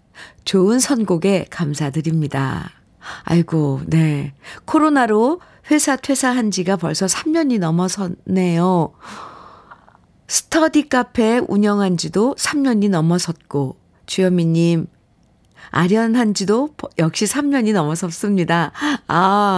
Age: 50-69